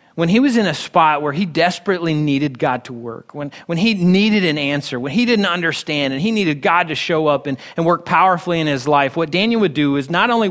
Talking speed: 250 wpm